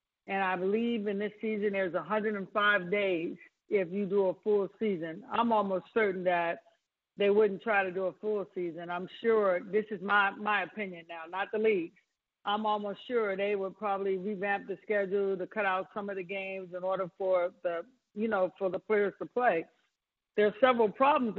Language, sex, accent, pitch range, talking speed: English, female, American, 190-215 Hz, 190 wpm